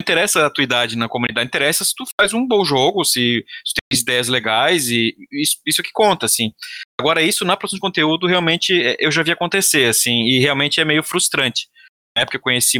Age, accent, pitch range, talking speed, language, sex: 20-39, Brazilian, 125-170 Hz, 215 wpm, Portuguese, male